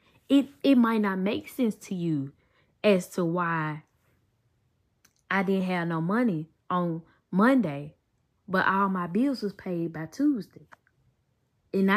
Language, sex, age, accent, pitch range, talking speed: English, female, 10-29, American, 155-225 Hz, 135 wpm